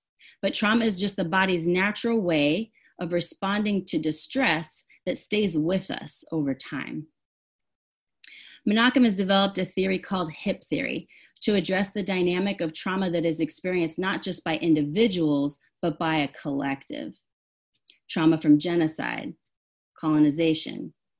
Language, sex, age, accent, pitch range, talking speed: English, female, 30-49, American, 160-210 Hz, 135 wpm